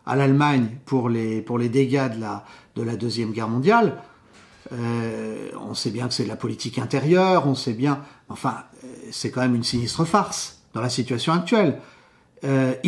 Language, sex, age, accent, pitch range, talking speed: French, male, 40-59, French, 125-160 Hz, 180 wpm